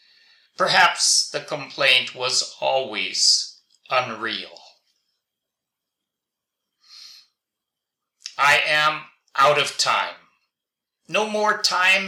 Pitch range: 135-165 Hz